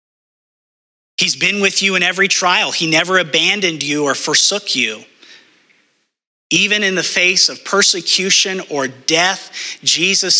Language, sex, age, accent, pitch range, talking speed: English, male, 30-49, American, 145-190 Hz, 135 wpm